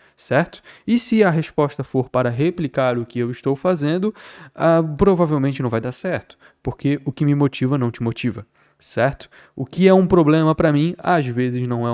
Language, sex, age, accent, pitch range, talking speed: Portuguese, male, 20-39, Brazilian, 125-185 Hz, 195 wpm